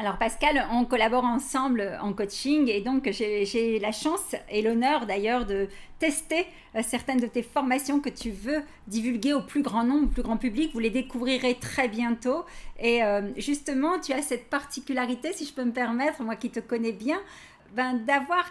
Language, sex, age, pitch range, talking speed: French, female, 50-69, 235-285 Hz, 185 wpm